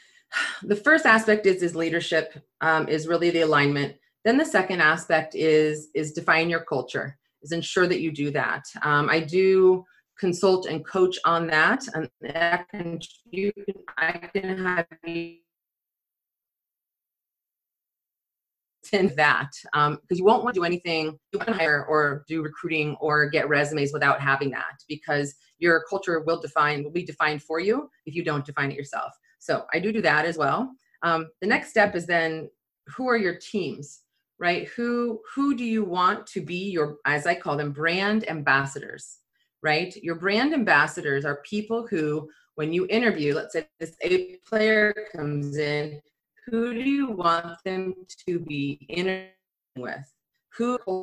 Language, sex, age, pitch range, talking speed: English, female, 30-49, 155-200 Hz, 160 wpm